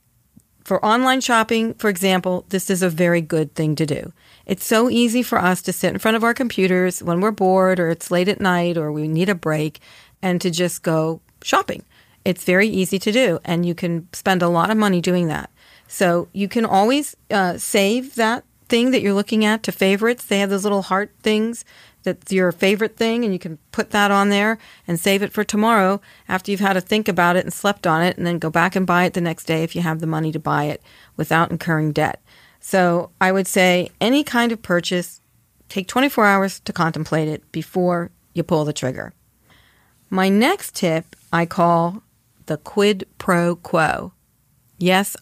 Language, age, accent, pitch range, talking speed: English, 40-59, American, 170-205 Hz, 205 wpm